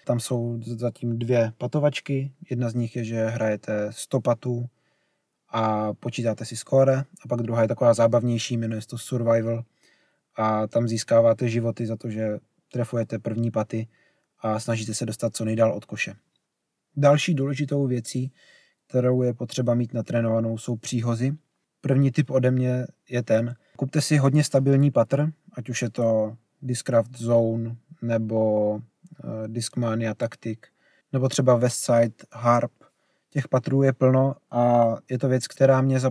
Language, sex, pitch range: Czech, male, 115-135 Hz